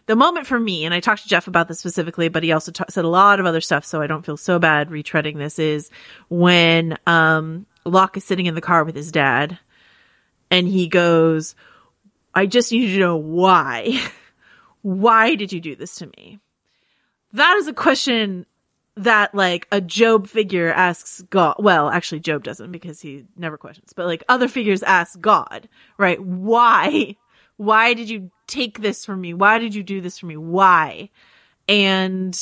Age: 30-49